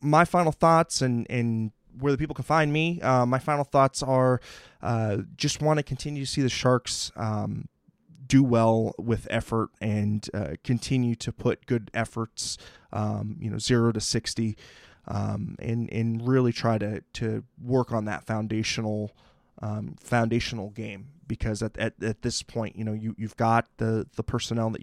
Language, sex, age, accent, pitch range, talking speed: English, male, 20-39, American, 115-150 Hz, 175 wpm